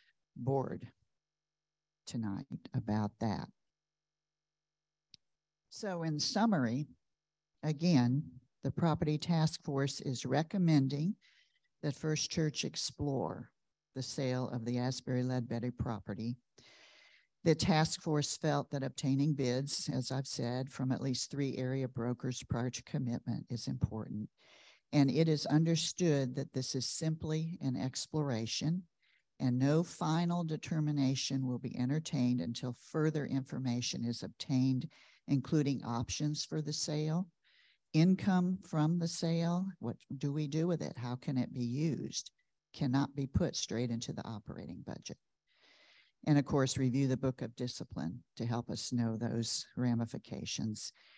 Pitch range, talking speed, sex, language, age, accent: 125-155 Hz, 130 wpm, male, English, 50-69, American